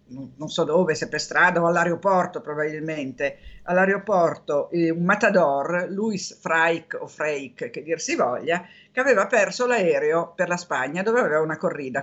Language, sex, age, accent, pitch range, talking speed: Italian, female, 50-69, native, 160-205 Hz, 150 wpm